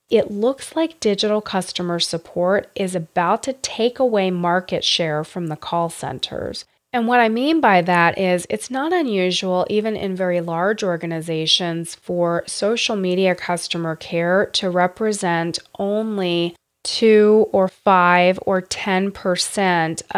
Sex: female